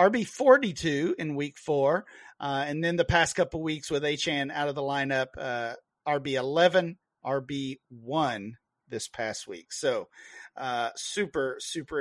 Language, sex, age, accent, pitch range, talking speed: English, male, 40-59, American, 150-180 Hz, 160 wpm